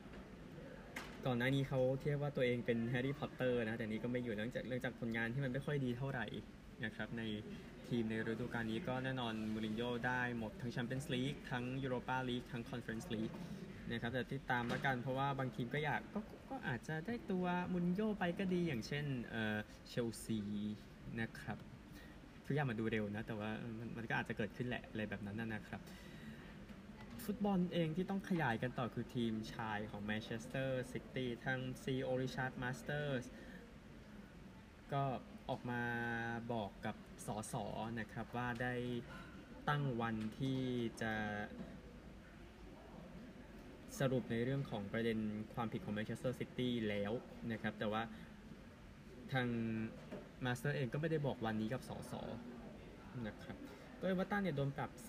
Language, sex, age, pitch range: Thai, male, 20-39, 115-135 Hz